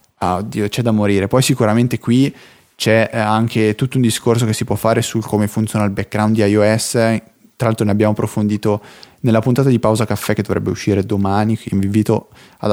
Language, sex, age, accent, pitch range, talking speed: Italian, male, 20-39, native, 105-130 Hz, 200 wpm